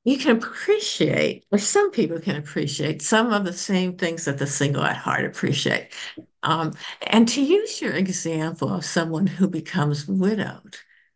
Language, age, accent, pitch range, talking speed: English, 60-79, American, 170-260 Hz, 160 wpm